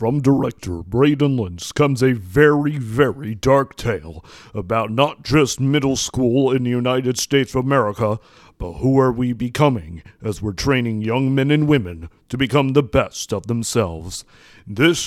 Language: English